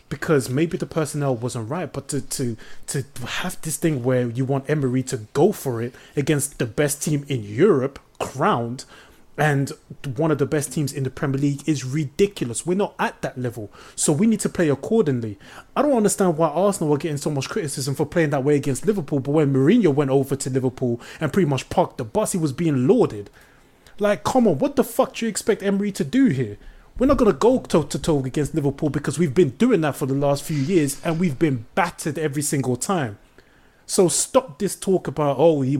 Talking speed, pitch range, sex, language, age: 220 wpm, 135-175 Hz, male, English, 20-39